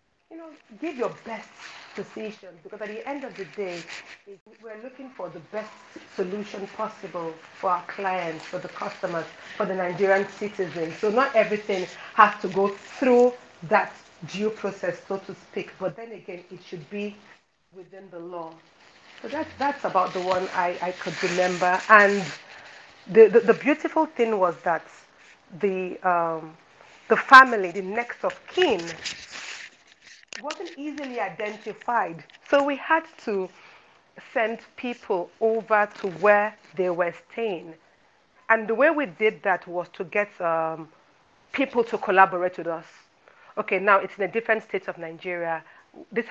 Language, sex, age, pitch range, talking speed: English, female, 40-59, 180-225 Hz, 155 wpm